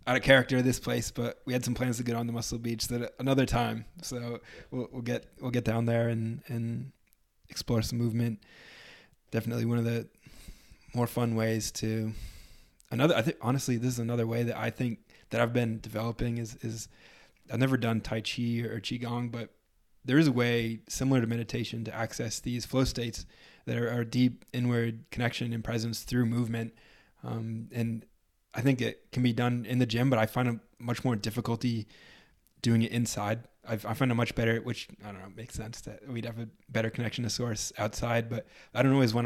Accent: American